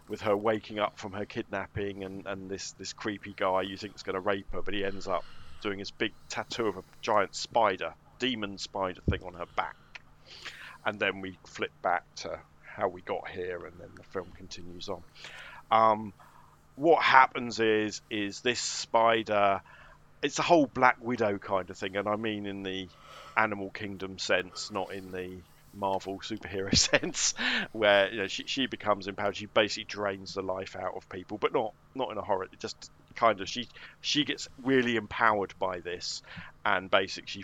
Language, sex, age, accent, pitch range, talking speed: English, male, 40-59, British, 95-110 Hz, 185 wpm